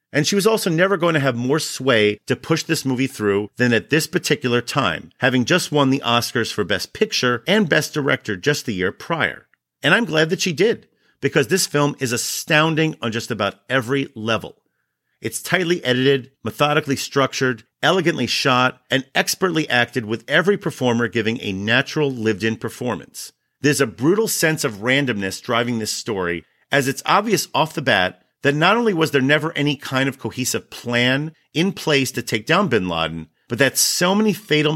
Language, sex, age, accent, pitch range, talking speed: English, male, 40-59, American, 115-155 Hz, 185 wpm